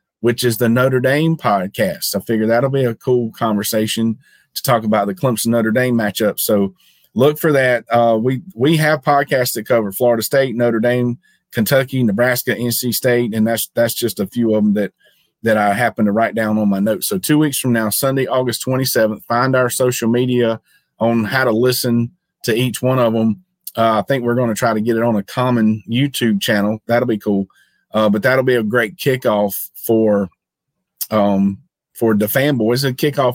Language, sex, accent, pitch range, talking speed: English, male, American, 110-130 Hz, 200 wpm